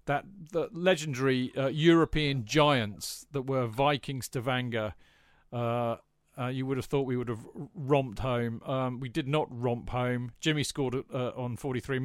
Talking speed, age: 165 wpm, 40-59